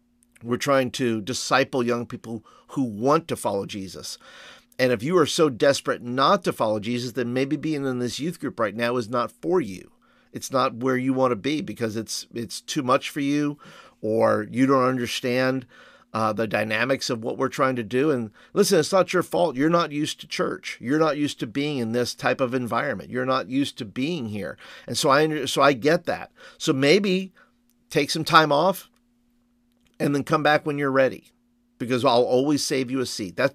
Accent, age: American, 50-69